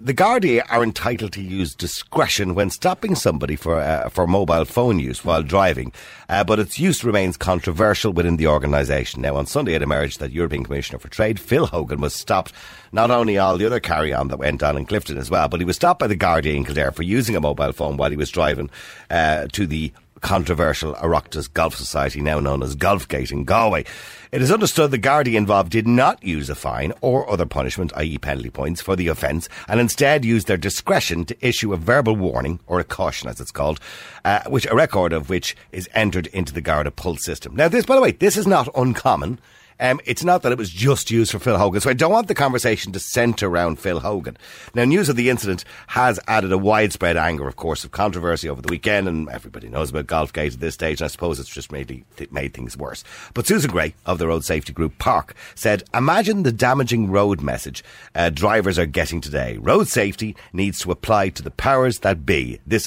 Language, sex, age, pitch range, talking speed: English, male, 60-79, 75-110 Hz, 220 wpm